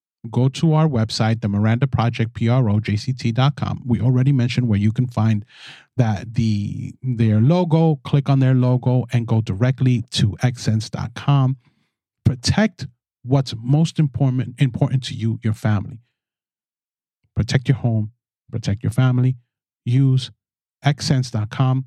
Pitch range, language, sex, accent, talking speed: 110-135 Hz, English, male, American, 125 wpm